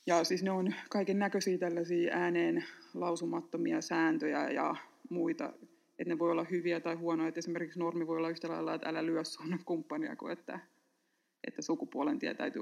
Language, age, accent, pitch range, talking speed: Finnish, 20-39, native, 165-215 Hz, 160 wpm